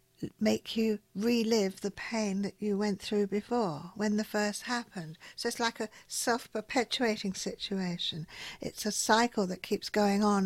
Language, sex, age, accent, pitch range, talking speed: English, female, 60-79, British, 195-235 Hz, 155 wpm